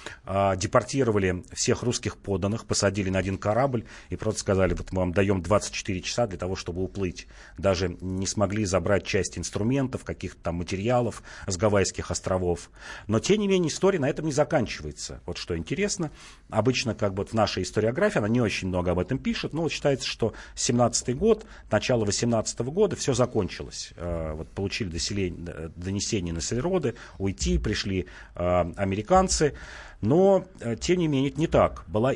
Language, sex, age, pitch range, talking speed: Russian, male, 40-59, 95-125 Hz, 160 wpm